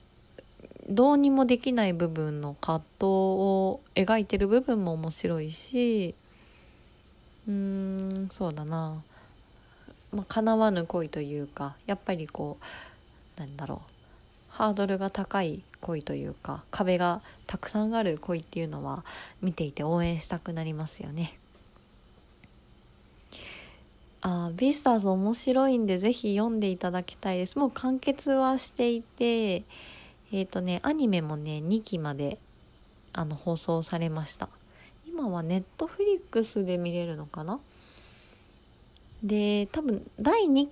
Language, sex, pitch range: Japanese, female, 165-215 Hz